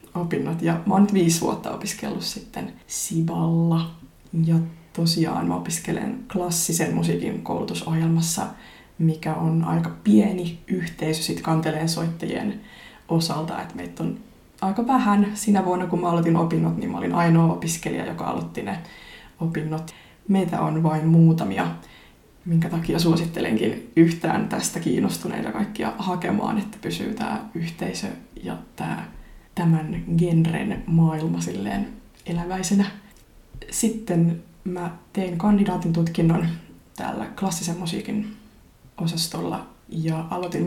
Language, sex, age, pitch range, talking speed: Finnish, female, 20-39, 165-190 Hz, 115 wpm